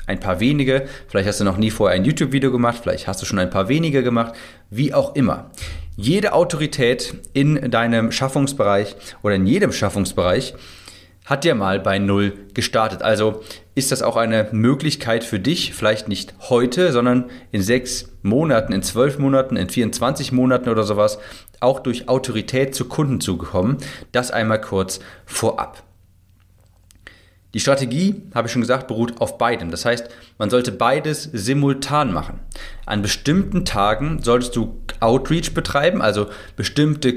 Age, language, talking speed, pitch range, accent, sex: 30-49, German, 155 wpm, 105-135 Hz, German, male